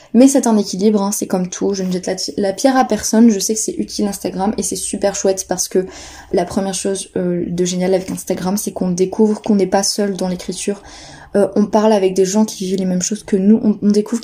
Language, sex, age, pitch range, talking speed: French, female, 20-39, 195-235 Hz, 255 wpm